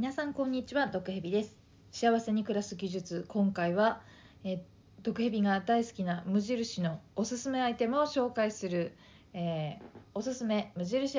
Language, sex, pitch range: Japanese, female, 180-245 Hz